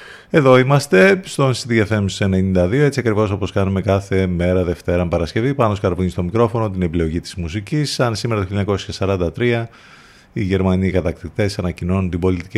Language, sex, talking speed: Greek, male, 150 wpm